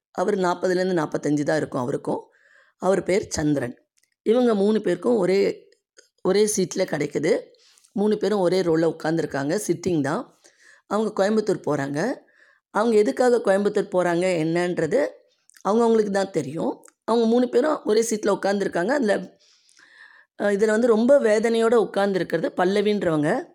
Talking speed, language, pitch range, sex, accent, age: 120 wpm, Tamil, 175-230 Hz, female, native, 20-39